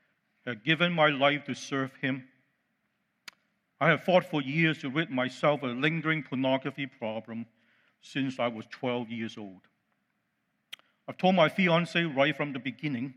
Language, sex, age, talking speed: English, male, 50-69, 160 wpm